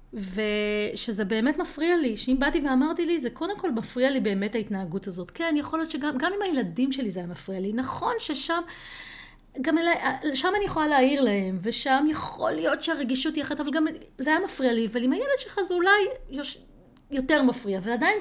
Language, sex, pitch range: Hebrew, female, 210-295 Hz